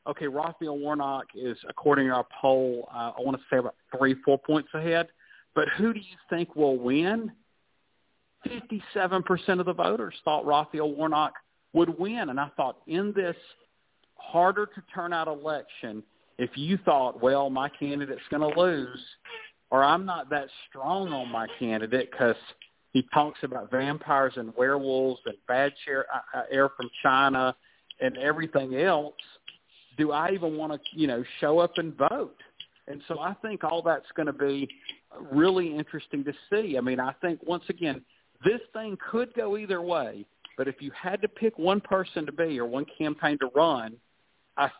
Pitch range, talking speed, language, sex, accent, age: 135-175 Hz, 170 wpm, English, male, American, 40-59